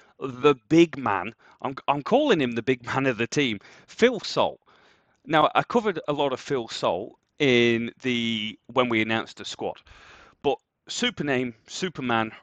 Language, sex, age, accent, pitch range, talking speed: English, male, 30-49, British, 110-140 Hz, 160 wpm